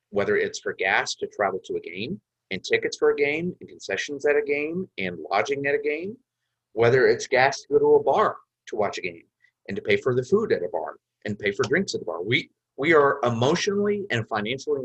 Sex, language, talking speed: male, English, 235 wpm